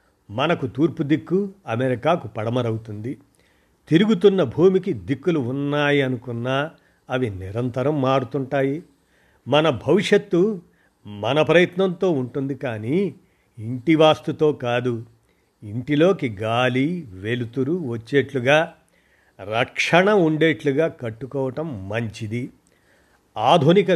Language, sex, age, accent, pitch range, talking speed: Telugu, male, 50-69, native, 120-160 Hz, 80 wpm